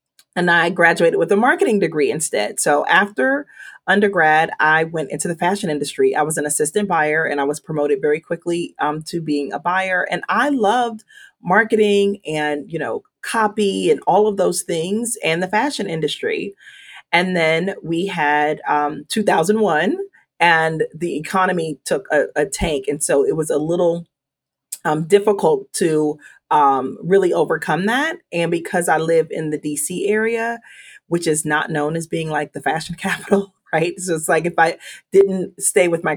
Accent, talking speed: American, 175 wpm